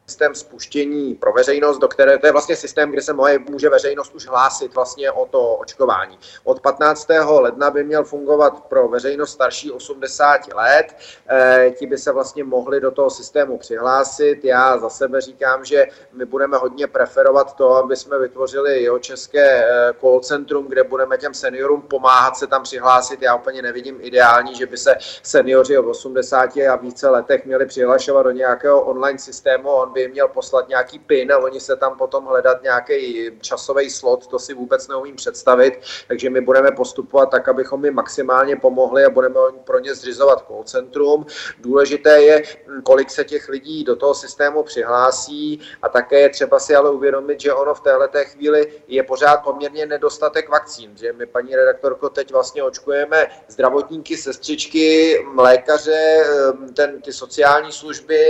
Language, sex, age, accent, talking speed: Czech, male, 40-59, native, 165 wpm